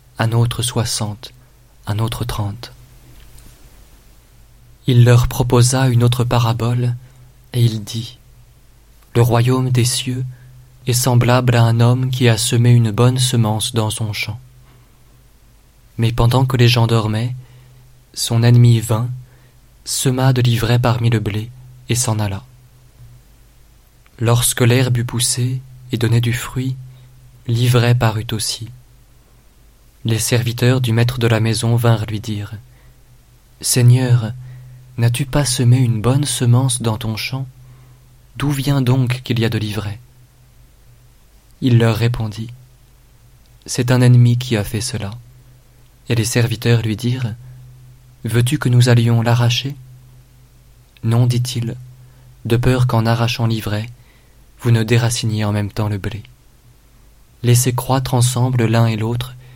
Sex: male